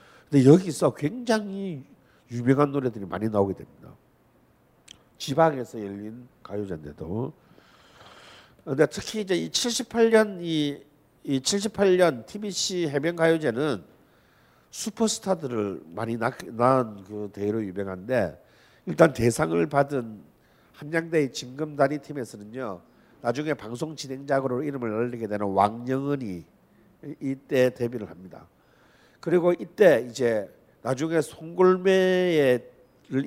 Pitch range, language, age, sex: 115-165 Hz, Korean, 50-69, male